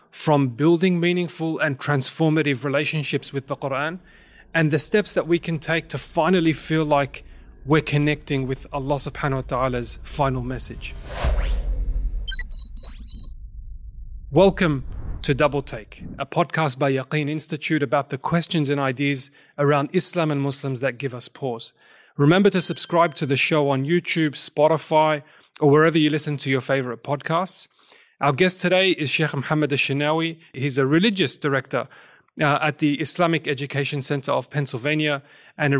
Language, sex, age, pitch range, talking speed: English, male, 30-49, 135-155 Hz, 150 wpm